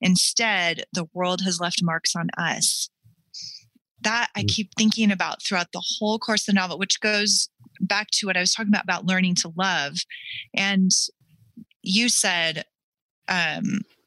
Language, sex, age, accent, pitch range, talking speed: English, female, 30-49, American, 165-200 Hz, 160 wpm